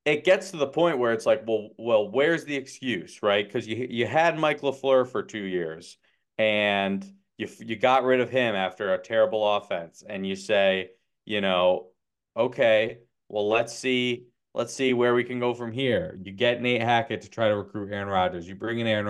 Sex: male